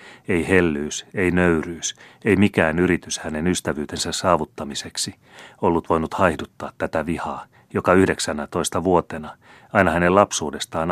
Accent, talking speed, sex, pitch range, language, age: native, 115 wpm, male, 75-90 Hz, Finnish, 30-49